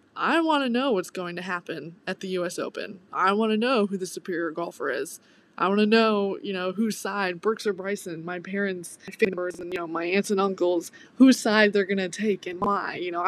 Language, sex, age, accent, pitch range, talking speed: English, female, 20-39, American, 190-225 Hz, 245 wpm